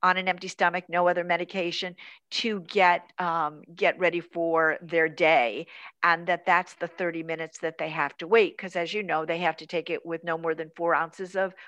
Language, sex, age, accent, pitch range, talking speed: English, female, 50-69, American, 165-195 Hz, 215 wpm